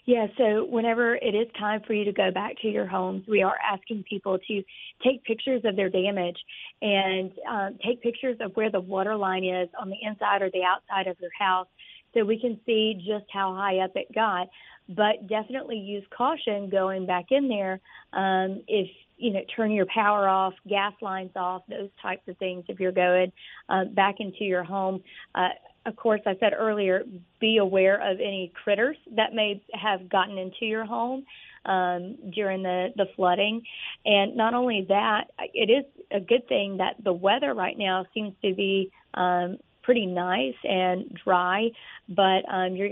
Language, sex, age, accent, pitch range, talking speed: English, female, 40-59, American, 185-220 Hz, 185 wpm